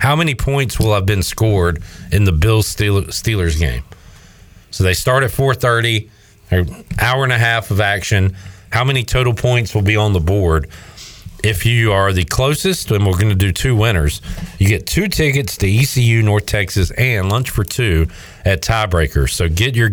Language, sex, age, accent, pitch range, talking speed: English, male, 40-59, American, 90-120 Hz, 185 wpm